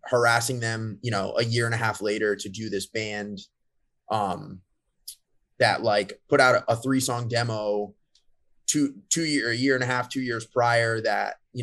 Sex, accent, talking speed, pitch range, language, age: male, American, 190 wpm, 105-125 Hz, English, 20-39